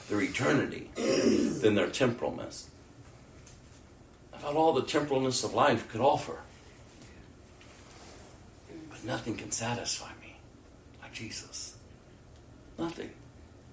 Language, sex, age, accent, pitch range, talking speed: English, male, 60-79, American, 100-140 Hz, 95 wpm